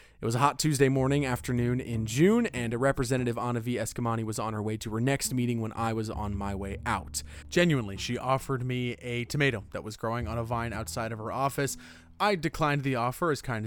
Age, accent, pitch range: 30-49, American, 110-145 Hz